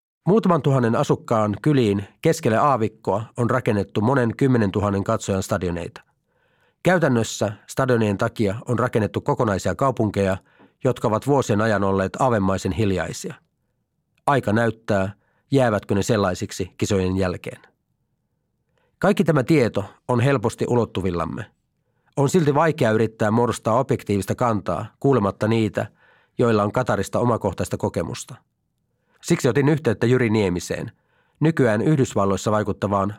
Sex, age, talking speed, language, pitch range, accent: male, 30-49, 110 wpm, Finnish, 100-130 Hz, native